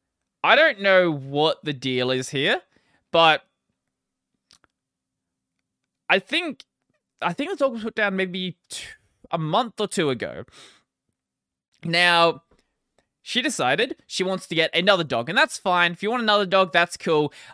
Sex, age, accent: male, 20-39, Australian